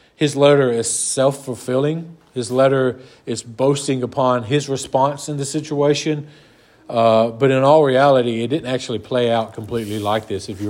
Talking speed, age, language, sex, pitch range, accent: 165 wpm, 40-59, English, male, 125-145 Hz, American